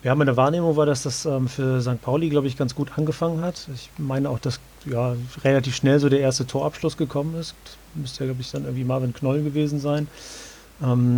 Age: 40-59